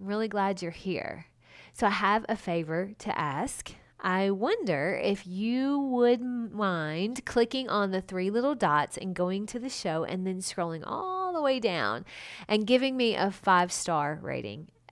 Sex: female